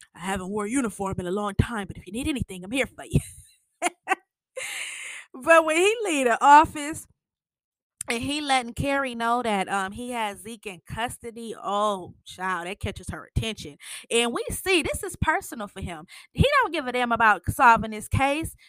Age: 20-39